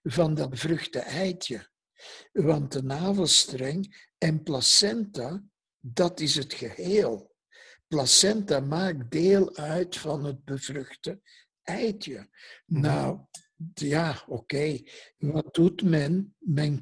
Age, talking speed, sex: 60-79, 105 wpm, male